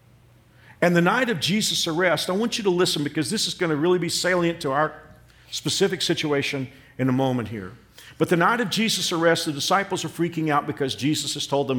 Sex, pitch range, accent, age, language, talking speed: male, 130-170 Hz, American, 50-69, English, 220 wpm